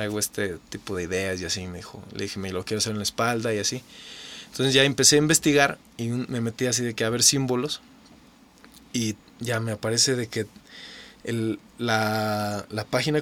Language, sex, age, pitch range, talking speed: Spanish, male, 20-39, 115-150 Hz, 200 wpm